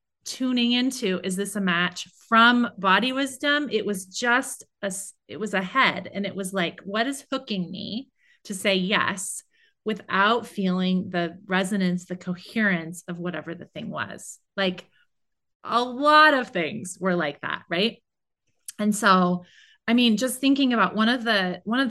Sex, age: female, 30-49